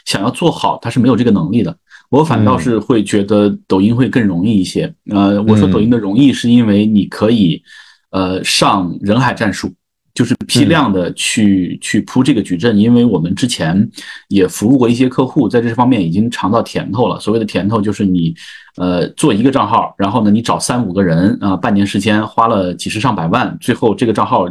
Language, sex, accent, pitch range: Chinese, male, native, 95-125 Hz